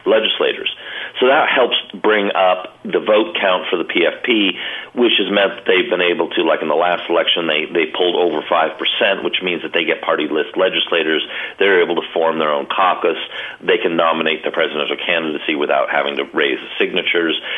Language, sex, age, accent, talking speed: English, male, 40-59, American, 200 wpm